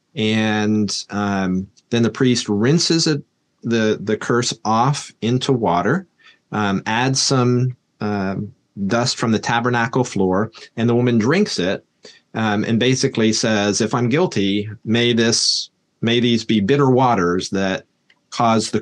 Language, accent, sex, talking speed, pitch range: English, American, male, 140 wpm, 100-125 Hz